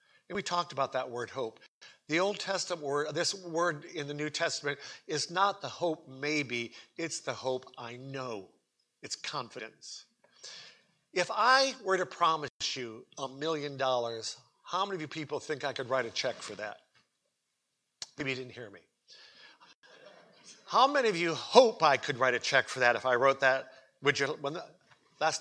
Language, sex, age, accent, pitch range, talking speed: English, male, 50-69, American, 135-180 Hz, 180 wpm